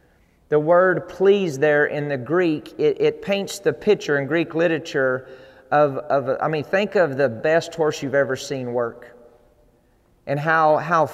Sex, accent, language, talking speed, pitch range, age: male, American, English, 165 wpm, 140-170 Hz, 40-59